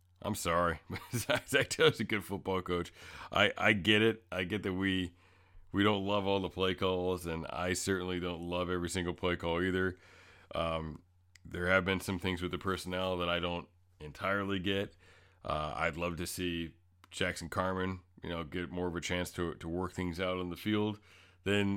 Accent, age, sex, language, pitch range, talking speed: American, 40-59, male, English, 85-100 Hz, 195 wpm